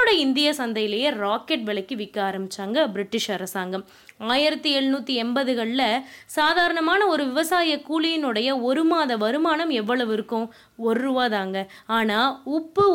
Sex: female